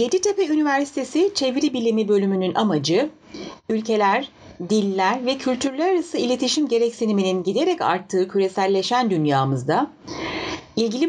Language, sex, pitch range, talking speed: Turkish, female, 190-255 Hz, 95 wpm